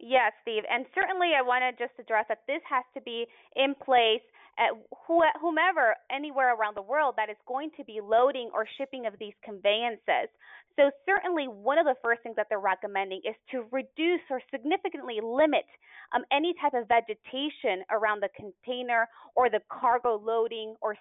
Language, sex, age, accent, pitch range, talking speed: English, female, 20-39, American, 215-275 Hz, 175 wpm